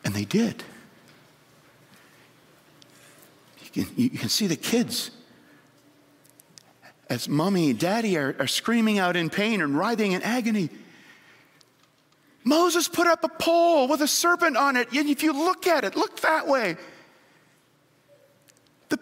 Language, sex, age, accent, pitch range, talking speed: English, male, 40-59, American, 195-310 Hz, 135 wpm